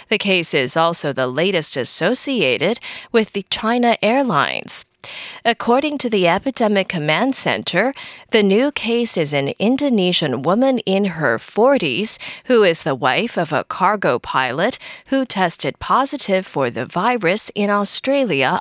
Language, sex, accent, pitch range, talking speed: English, female, American, 165-250 Hz, 140 wpm